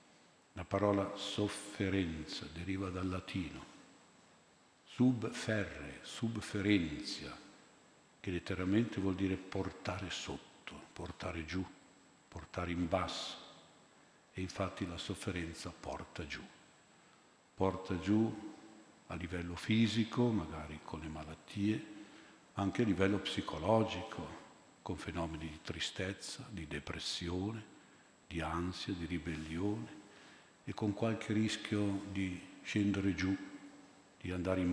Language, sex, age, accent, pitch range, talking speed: Italian, male, 50-69, native, 90-105 Hz, 100 wpm